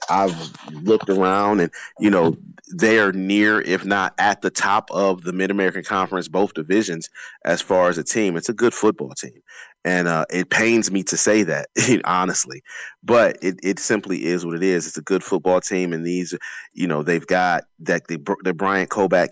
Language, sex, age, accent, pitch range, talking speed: English, male, 30-49, American, 90-100 Hz, 200 wpm